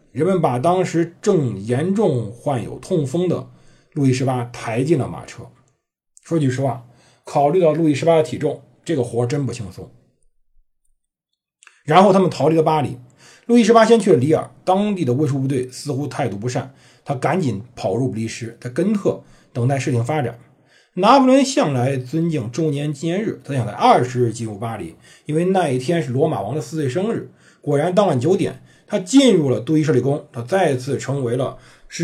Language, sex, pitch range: Chinese, male, 125-180 Hz